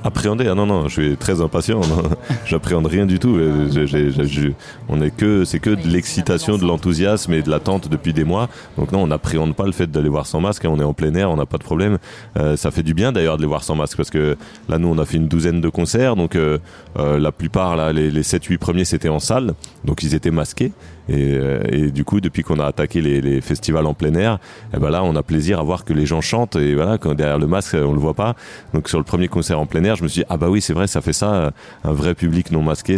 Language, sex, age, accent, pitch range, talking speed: French, male, 30-49, French, 75-90 Hz, 275 wpm